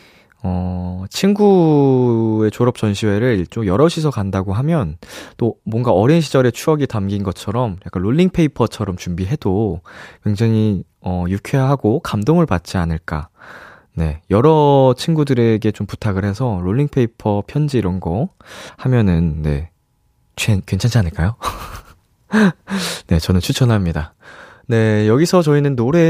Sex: male